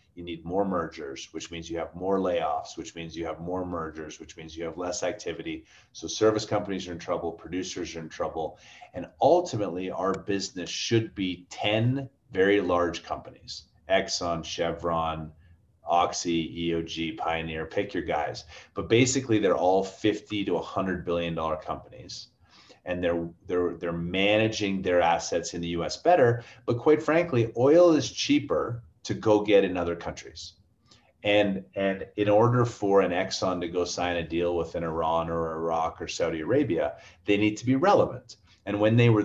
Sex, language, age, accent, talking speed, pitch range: male, English, 30-49, American, 170 wpm, 85-105 Hz